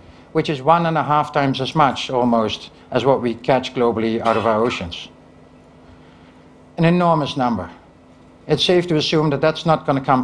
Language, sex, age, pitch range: Chinese, male, 60-79, 125-150 Hz